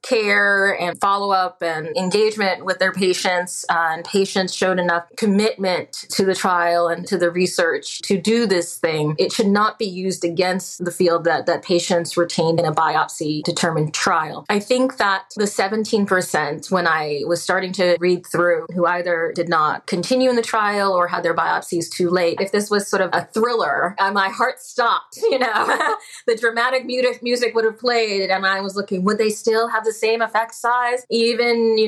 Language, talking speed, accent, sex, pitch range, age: English, 190 wpm, American, female, 175-215 Hz, 20-39